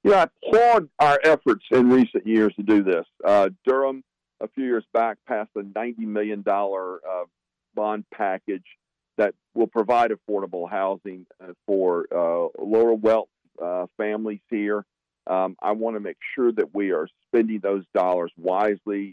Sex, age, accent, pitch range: male, 50-69, American, 90-115 Hz